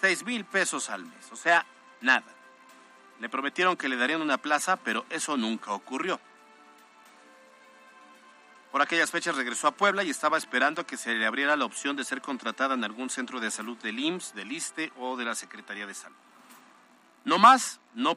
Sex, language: male, Spanish